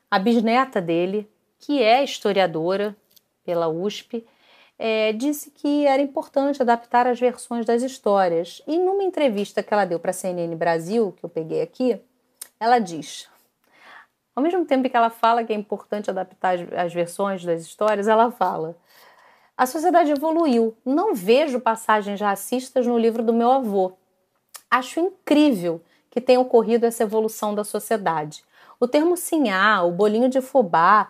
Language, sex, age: Portuguese, female, 30-49